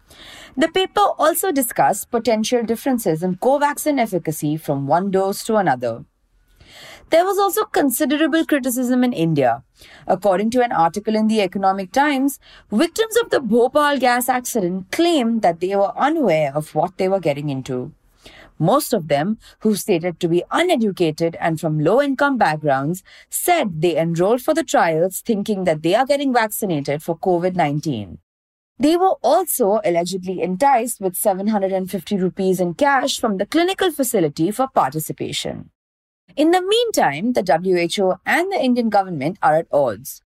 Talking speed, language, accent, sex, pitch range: 150 wpm, English, Indian, female, 170-275 Hz